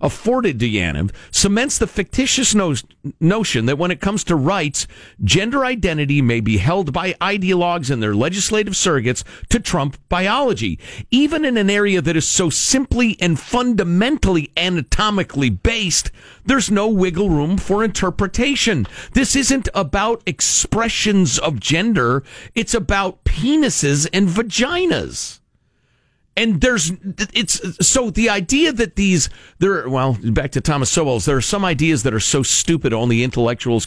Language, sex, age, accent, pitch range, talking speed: English, male, 50-69, American, 140-210 Hz, 140 wpm